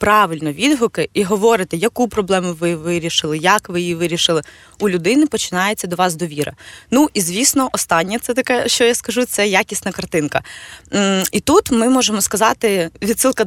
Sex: female